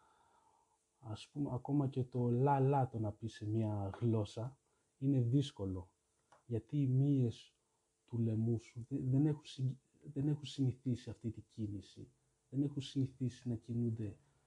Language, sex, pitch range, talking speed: Greek, male, 110-135 Hz, 135 wpm